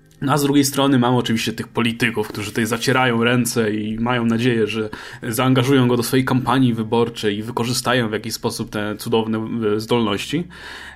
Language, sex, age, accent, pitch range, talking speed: Polish, male, 10-29, native, 115-155 Hz, 165 wpm